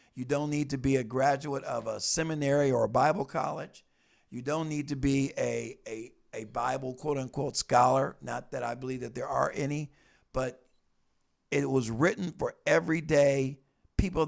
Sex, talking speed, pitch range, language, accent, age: male, 170 wpm, 140-175 Hz, English, American, 50-69